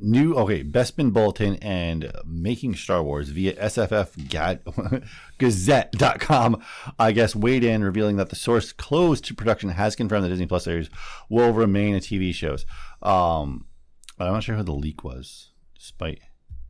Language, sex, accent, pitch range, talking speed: English, male, American, 85-115 Hz, 145 wpm